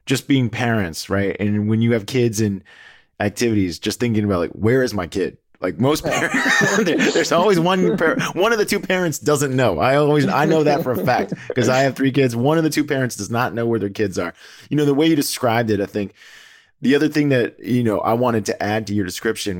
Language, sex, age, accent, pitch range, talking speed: English, male, 20-39, American, 100-135 Hz, 240 wpm